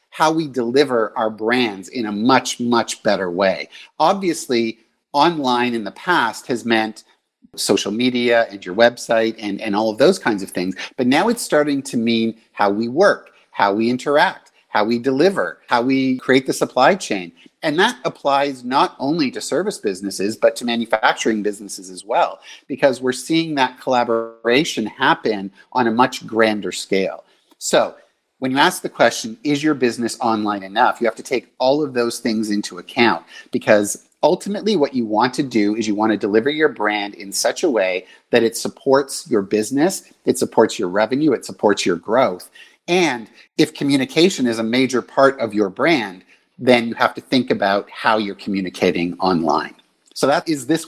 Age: 50-69